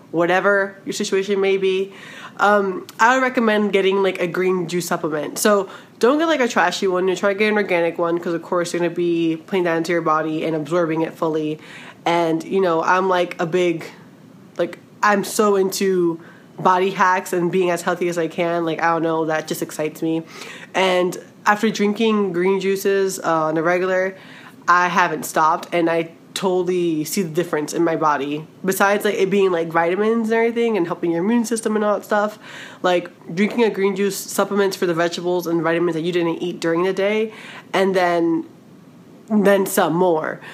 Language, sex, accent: English, female, American